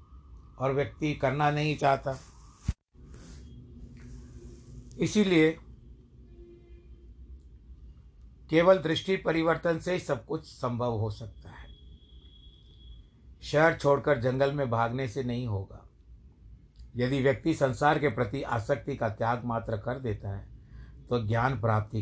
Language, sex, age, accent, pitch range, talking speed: Hindi, male, 60-79, native, 90-145 Hz, 105 wpm